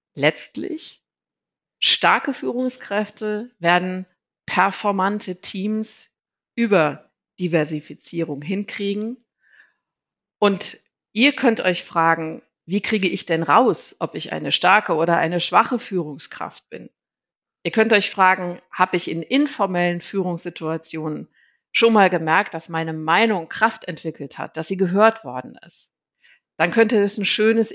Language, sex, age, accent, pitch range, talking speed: English, female, 50-69, German, 175-215 Hz, 120 wpm